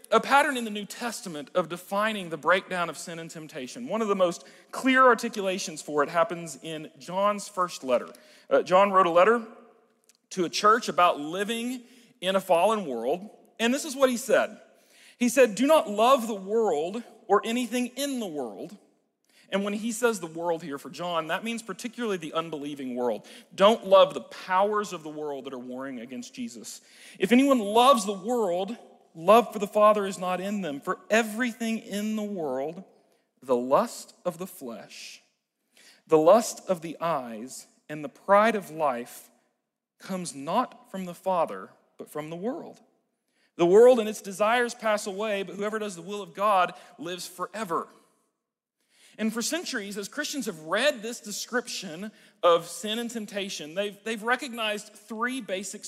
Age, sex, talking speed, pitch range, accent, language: 40-59, male, 175 wpm, 180-235 Hz, American, English